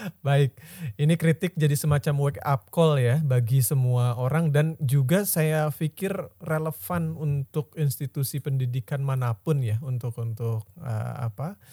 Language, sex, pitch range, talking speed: Indonesian, male, 125-155 Hz, 135 wpm